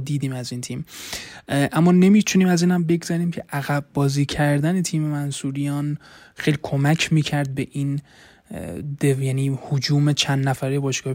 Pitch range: 135-150 Hz